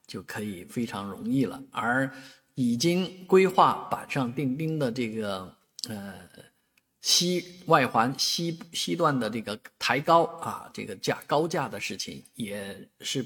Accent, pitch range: native, 120-175 Hz